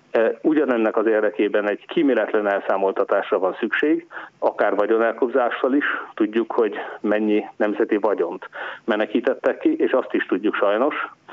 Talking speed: 120 wpm